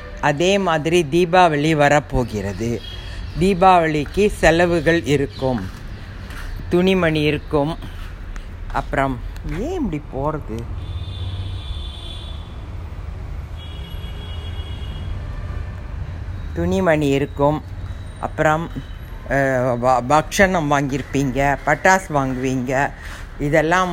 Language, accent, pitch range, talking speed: Tamil, native, 100-155 Hz, 55 wpm